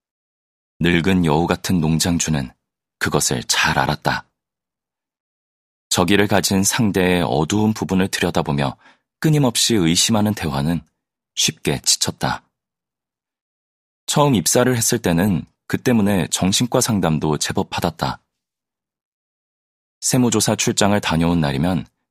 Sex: male